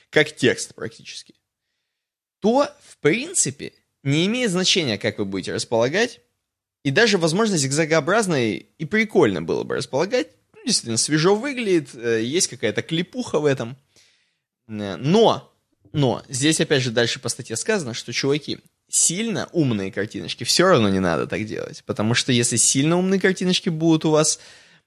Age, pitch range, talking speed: 20-39, 120-175 Hz, 145 wpm